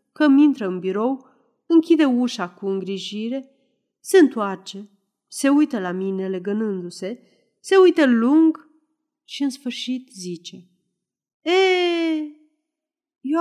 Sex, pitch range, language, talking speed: female, 195-300 Hz, Romanian, 105 wpm